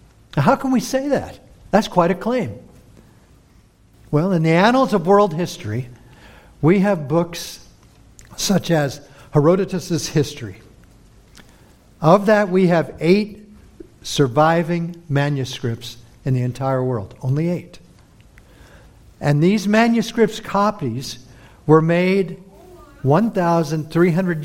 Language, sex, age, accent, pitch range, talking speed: English, male, 60-79, American, 125-185 Hz, 105 wpm